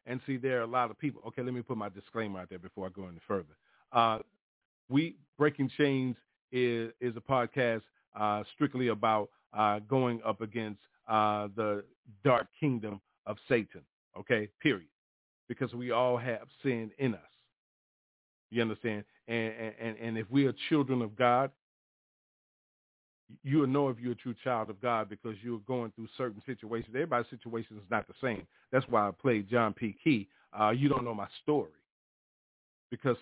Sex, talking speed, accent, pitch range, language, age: male, 175 wpm, American, 110-130 Hz, English, 40-59